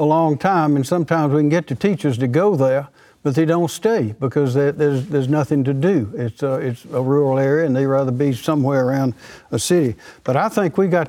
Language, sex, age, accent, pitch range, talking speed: English, male, 60-79, American, 130-160 Hz, 225 wpm